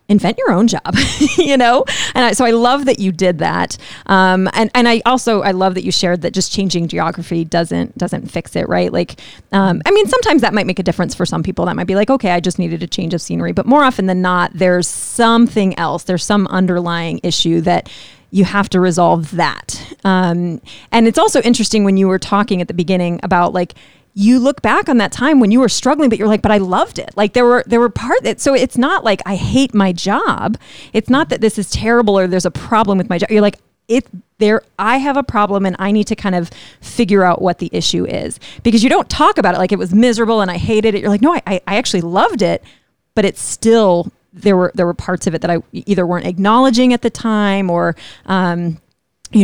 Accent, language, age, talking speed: American, English, 30-49, 245 wpm